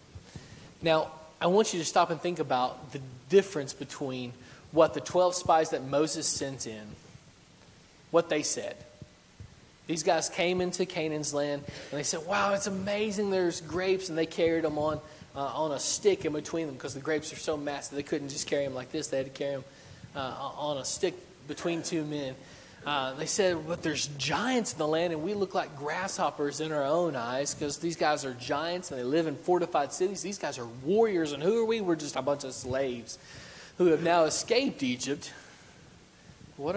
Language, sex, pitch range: English, male, 140-175 Hz